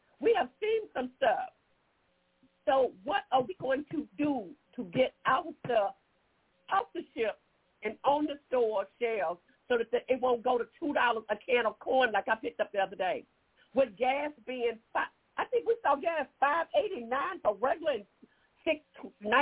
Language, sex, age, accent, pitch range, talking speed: English, female, 50-69, American, 225-315 Hz, 165 wpm